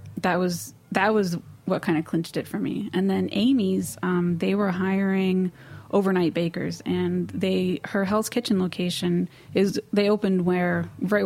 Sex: female